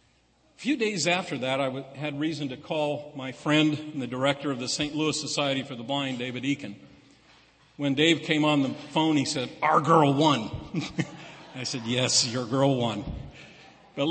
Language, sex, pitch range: English, male, 145-195 Hz